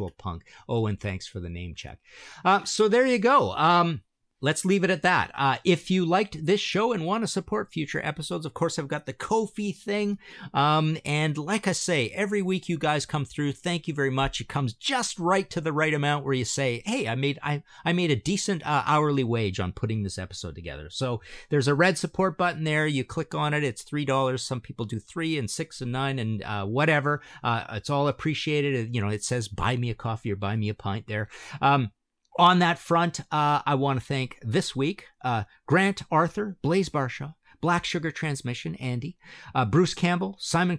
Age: 50-69